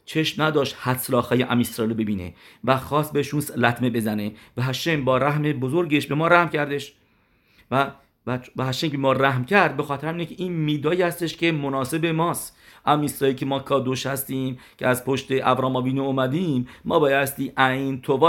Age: 50-69